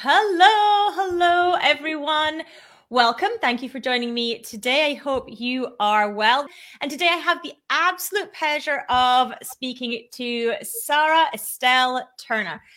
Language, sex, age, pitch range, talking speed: English, female, 30-49, 220-295 Hz, 130 wpm